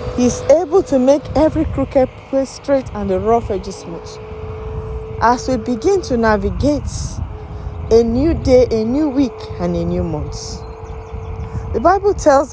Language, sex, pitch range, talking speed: English, female, 185-280 Hz, 150 wpm